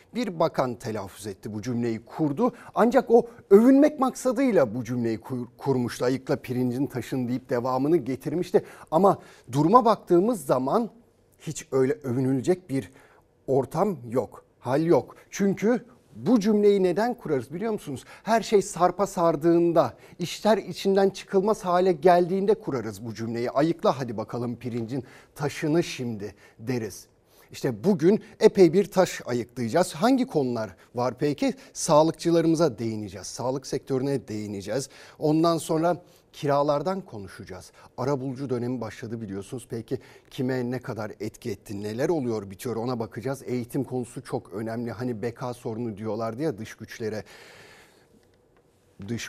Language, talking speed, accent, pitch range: Turkish, 130 wpm, native, 115-175 Hz